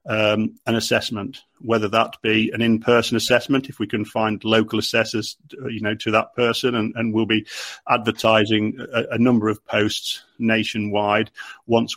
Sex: male